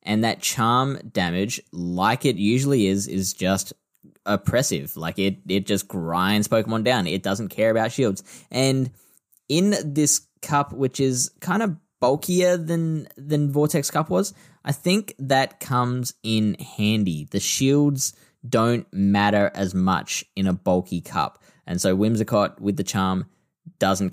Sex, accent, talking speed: male, Australian, 150 wpm